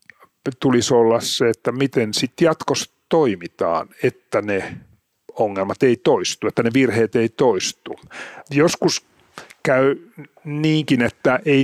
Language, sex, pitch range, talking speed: Finnish, male, 120-145 Hz, 120 wpm